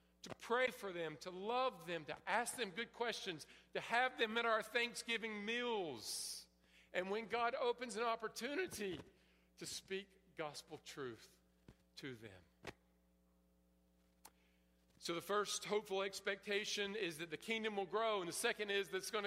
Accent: American